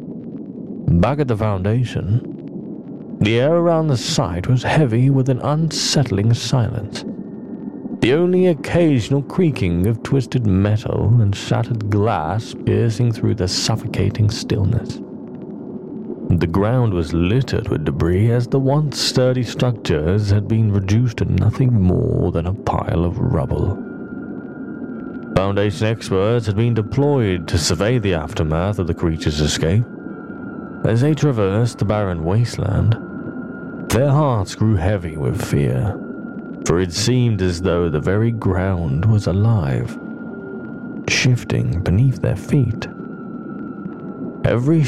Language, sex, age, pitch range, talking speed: English, male, 40-59, 100-135 Hz, 125 wpm